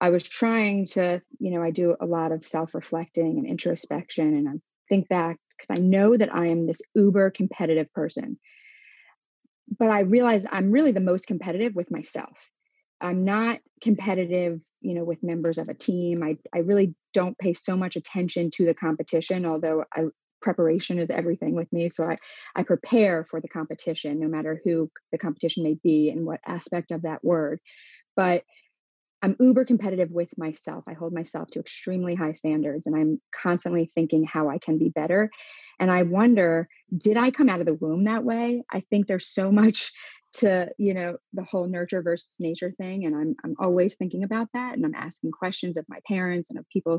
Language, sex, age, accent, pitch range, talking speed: English, female, 30-49, American, 165-200 Hz, 195 wpm